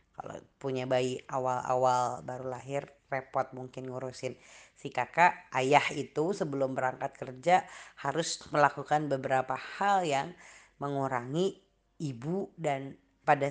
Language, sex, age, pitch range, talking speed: Indonesian, female, 20-39, 130-155 Hz, 105 wpm